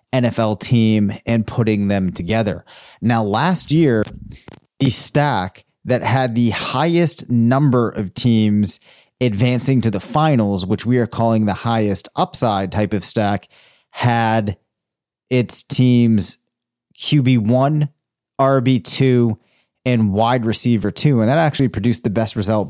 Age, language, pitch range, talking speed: 30-49, English, 105-130 Hz, 125 wpm